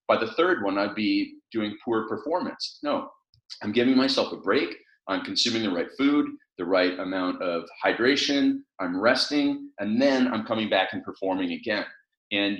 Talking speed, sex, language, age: 170 wpm, male, English, 30-49